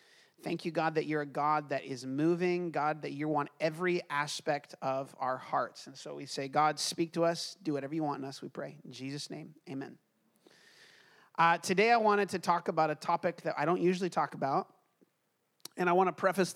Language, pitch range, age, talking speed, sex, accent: English, 145-175 Hz, 30-49, 215 wpm, male, American